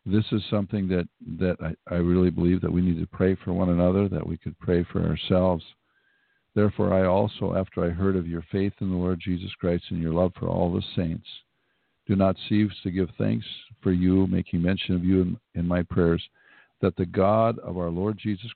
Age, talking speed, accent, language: 50-69, 215 wpm, American, English